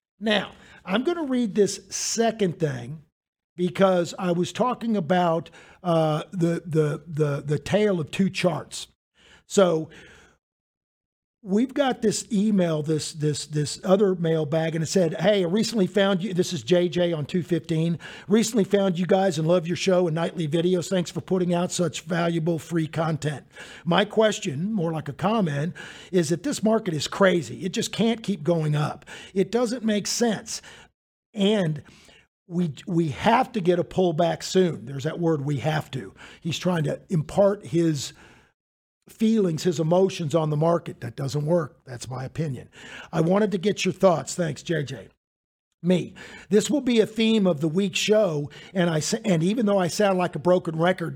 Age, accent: 50-69, American